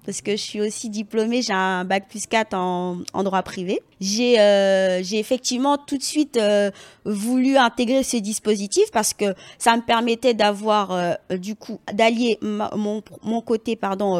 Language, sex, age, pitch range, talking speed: French, female, 20-39, 195-245 Hz, 180 wpm